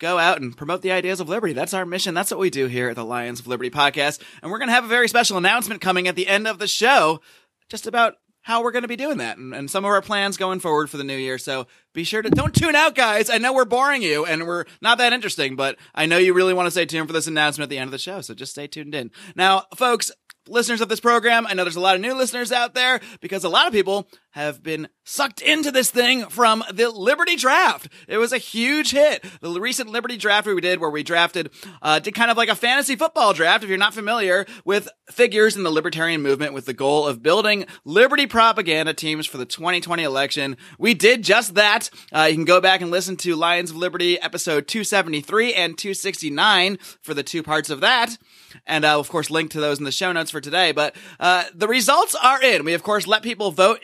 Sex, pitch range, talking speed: male, 155-230 Hz, 250 wpm